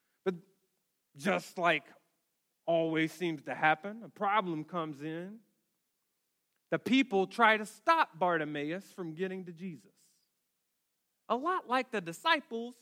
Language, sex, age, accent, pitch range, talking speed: English, male, 30-49, American, 150-220 Hz, 115 wpm